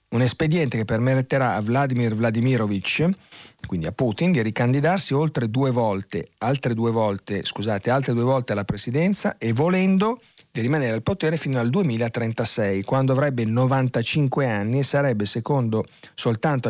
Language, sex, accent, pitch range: Italian, male, native, 115-150 Hz